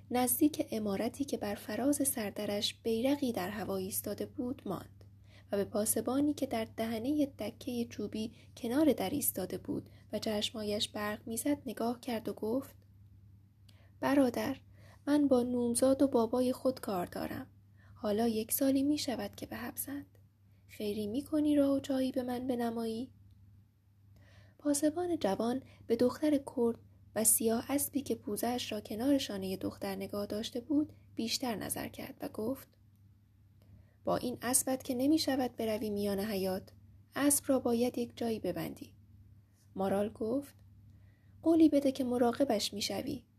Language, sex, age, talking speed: Persian, female, 10-29, 145 wpm